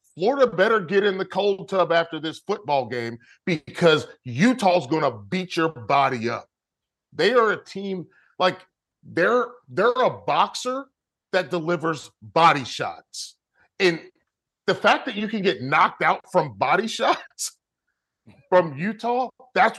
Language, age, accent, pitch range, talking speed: English, 40-59, American, 155-205 Hz, 145 wpm